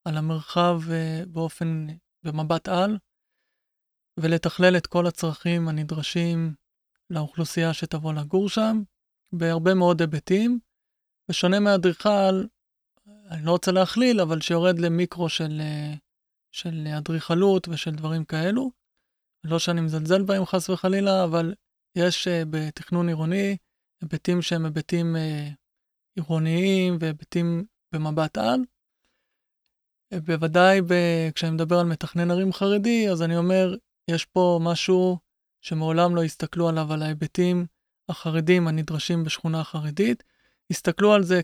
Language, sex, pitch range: Hebrew, male, 165-185 Hz